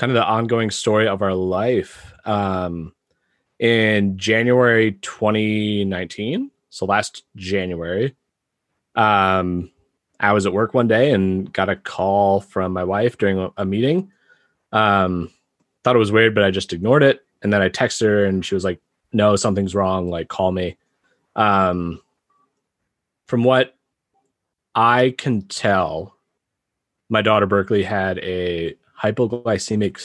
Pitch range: 95-110 Hz